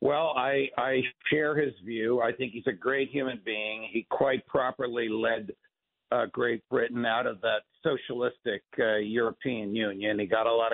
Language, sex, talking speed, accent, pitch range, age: English, male, 175 wpm, American, 120-145 Hz, 60-79